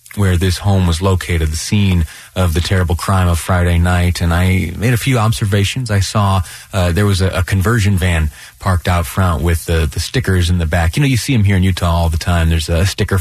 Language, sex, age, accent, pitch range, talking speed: English, male, 30-49, American, 85-100 Hz, 240 wpm